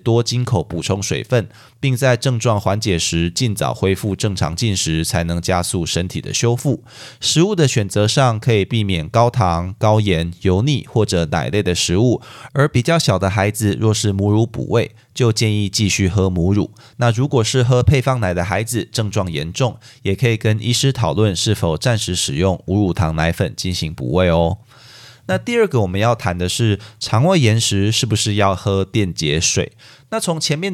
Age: 20-39